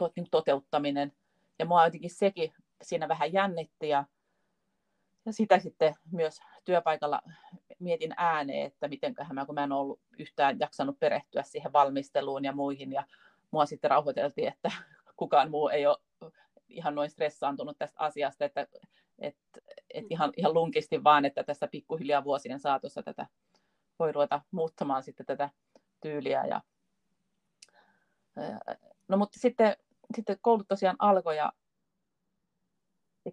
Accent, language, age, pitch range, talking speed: native, Finnish, 30-49, 145-195 Hz, 135 wpm